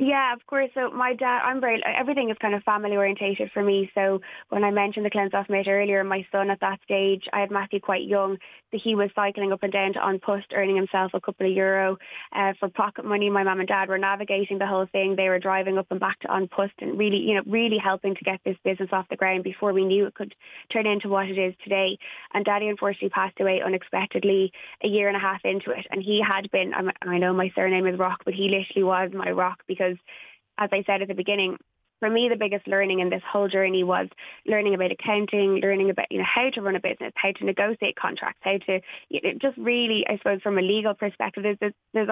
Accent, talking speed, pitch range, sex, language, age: Irish, 245 wpm, 185-205 Hz, female, English, 20-39